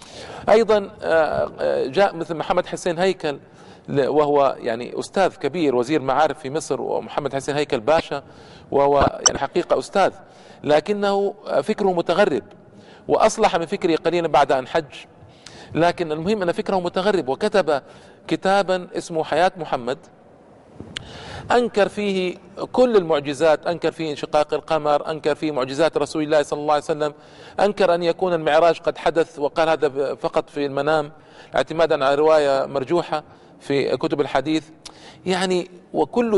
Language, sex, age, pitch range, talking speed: Arabic, male, 50-69, 155-190 Hz, 130 wpm